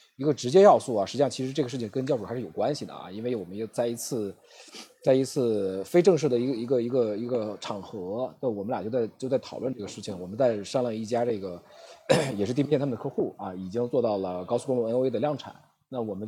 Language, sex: Chinese, male